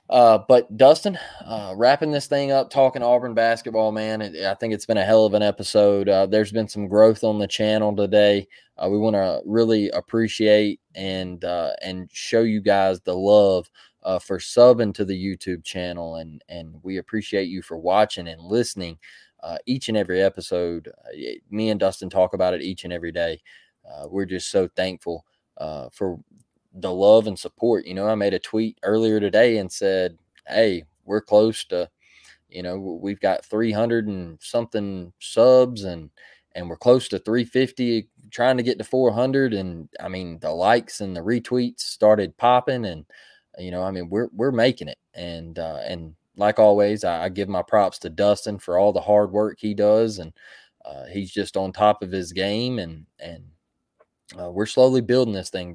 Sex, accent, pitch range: male, American, 90-110 Hz